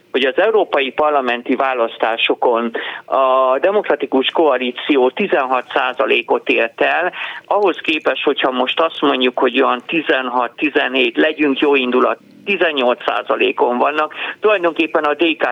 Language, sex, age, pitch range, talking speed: Hungarian, male, 50-69, 130-170 Hz, 115 wpm